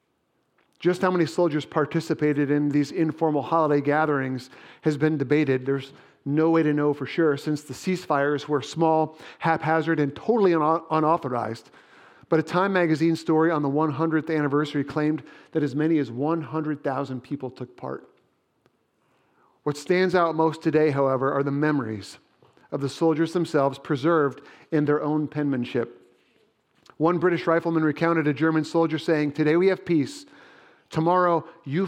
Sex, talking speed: male, 150 wpm